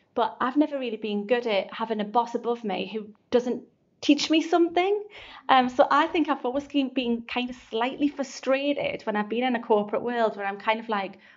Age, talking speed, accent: 30-49, 215 wpm, British